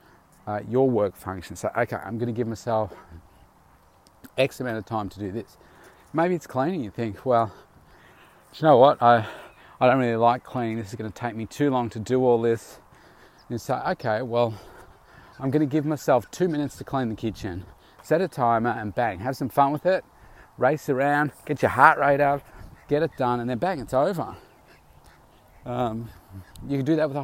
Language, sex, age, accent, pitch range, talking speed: English, male, 40-59, Australian, 105-130 Hz, 205 wpm